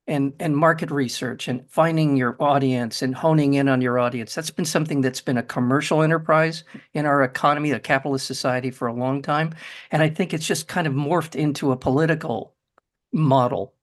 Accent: American